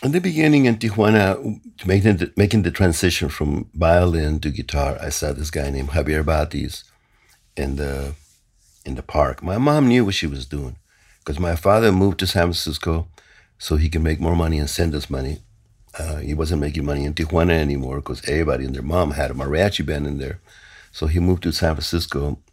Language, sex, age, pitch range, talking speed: English, male, 60-79, 75-100 Hz, 195 wpm